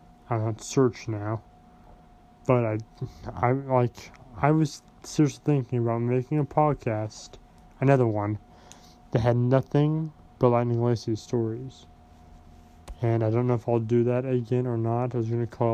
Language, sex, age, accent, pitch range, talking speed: English, male, 20-39, American, 105-125 Hz, 155 wpm